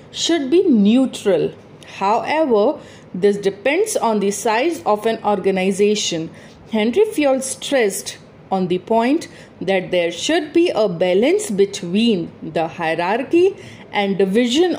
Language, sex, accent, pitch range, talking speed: English, female, Indian, 195-305 Hz, 120 wpm